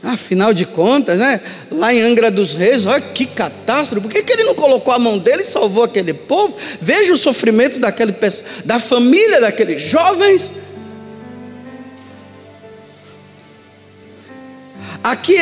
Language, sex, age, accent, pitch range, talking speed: Portuguese, male, 50-69, Brazilian, 250-355 Hz, 130 wpm